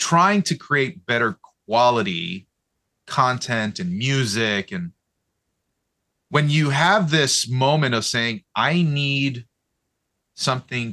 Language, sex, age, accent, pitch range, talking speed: English, male, 30-49, American, 105-155 Hz, 105 wpm